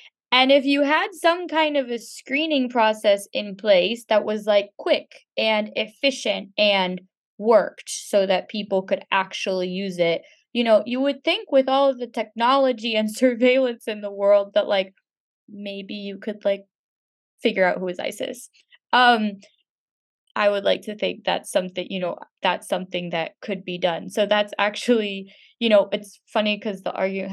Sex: female